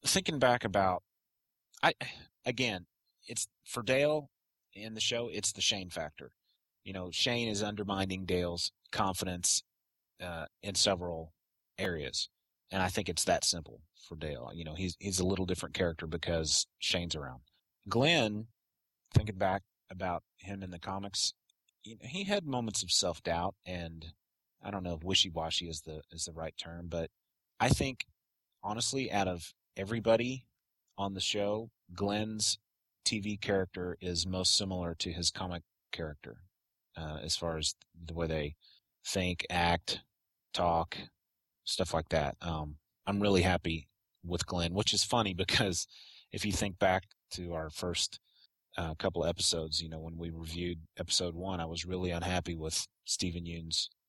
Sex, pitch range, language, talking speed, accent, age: male, 85-100 Hz, English, 155 wpm, American, 30-49